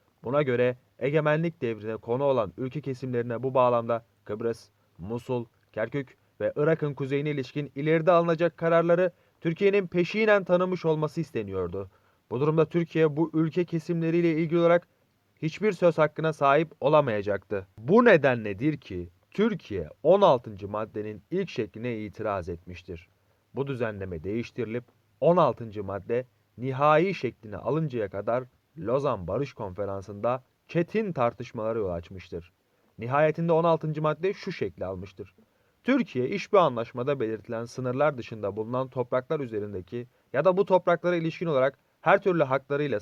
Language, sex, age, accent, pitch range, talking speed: Turkish, male, 30-49, native, 115-165 Hz, 125 wpm